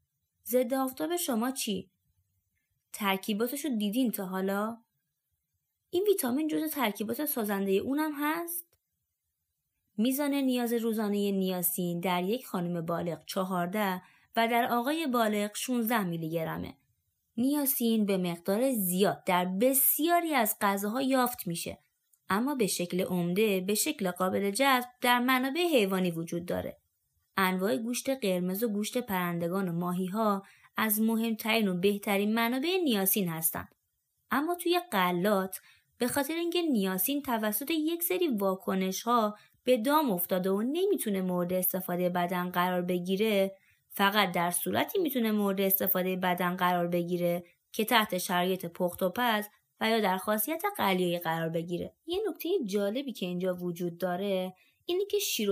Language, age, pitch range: Persian, 20-39, 180-250 Hz